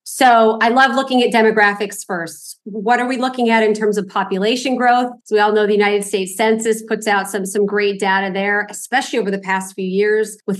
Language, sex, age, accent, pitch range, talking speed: English, female, 40-59, American, 200-230 Hz, 220 wpm